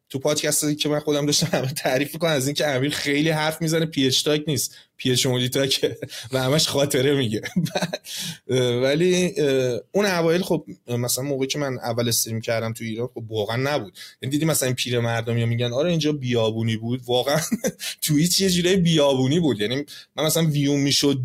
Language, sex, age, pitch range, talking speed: Persian, male, 30-49, 140-180 Hz, 165 wpm